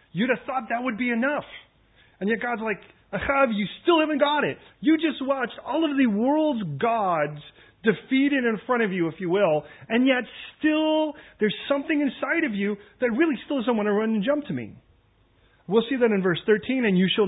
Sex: male